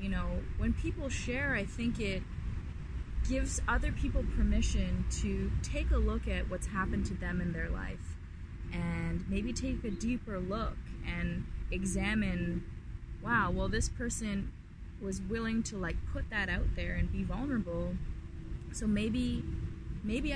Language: English